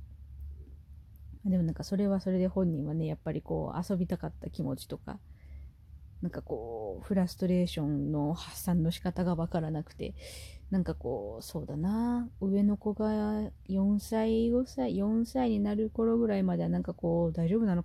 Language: Japanese